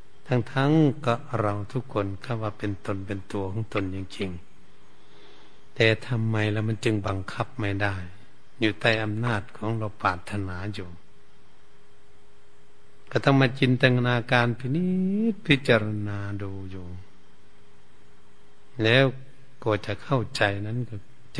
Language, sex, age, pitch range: Thai, male, 60-79, 100-115 Hz